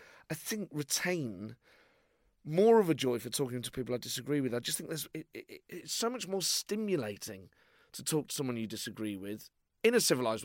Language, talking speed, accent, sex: English, 200 wpm, British, male